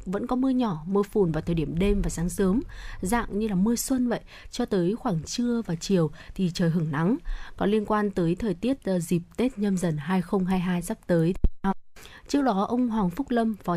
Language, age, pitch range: Vietnamese, 20-39, 175-220 Hz